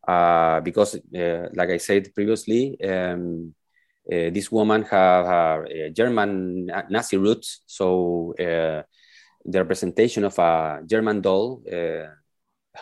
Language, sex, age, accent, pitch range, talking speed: English, male, 20-39, Spanish, 90-105 Hz, 120 wpm